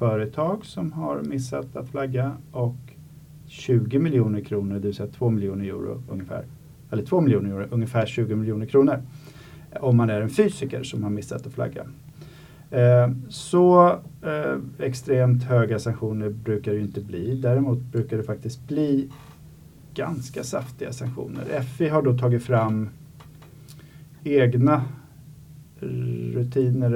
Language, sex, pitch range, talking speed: Swedish, male, 115-145 Hz, 130 wpm